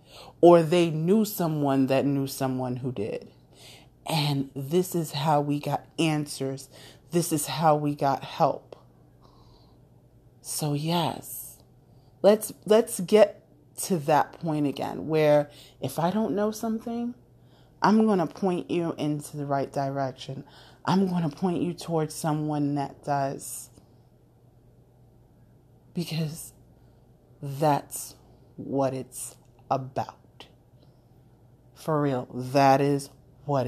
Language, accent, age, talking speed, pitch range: English, American, 30-49, 115 wpm, 130-180 Hz